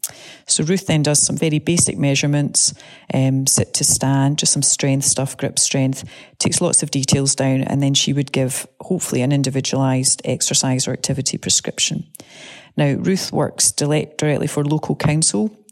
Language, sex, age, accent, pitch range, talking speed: English, female, 30-49, British, 140-170 Hz, 165 wpm